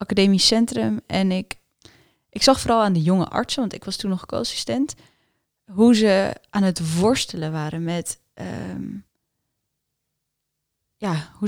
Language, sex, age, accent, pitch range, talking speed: Dutch, female, 10-29, Dutch, 165-210 Hz, 130 wpm